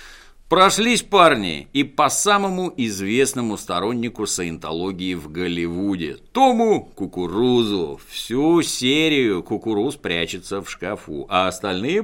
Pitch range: 90-145 Hz